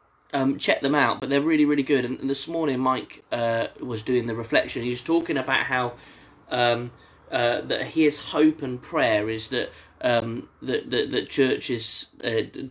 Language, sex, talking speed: English, male, 185 wpm